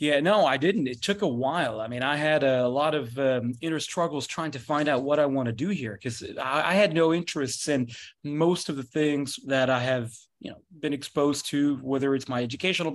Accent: American